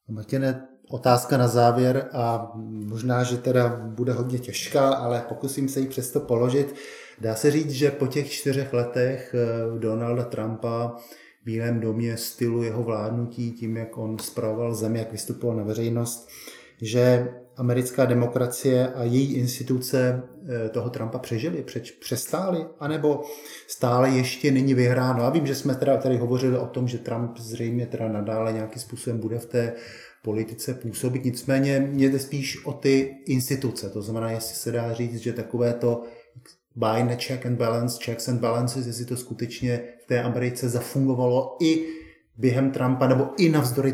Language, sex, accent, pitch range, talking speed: Czech, male, native, 115-130 Hz, 155 wpm